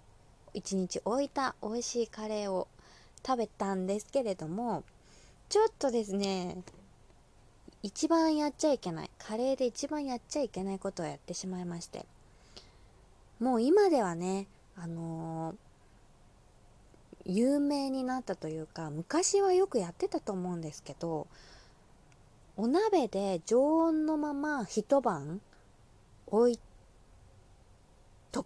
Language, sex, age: Japanese, female, 20-39